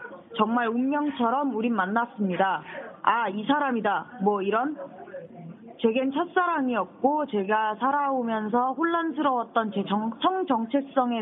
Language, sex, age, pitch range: Korean, female, 20-39, 200-250 Hz